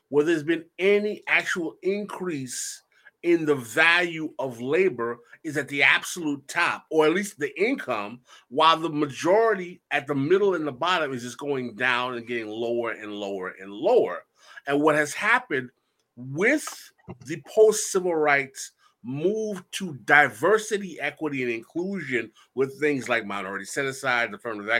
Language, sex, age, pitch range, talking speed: English, male, 30-49, 125-190 Hz, 150 wpm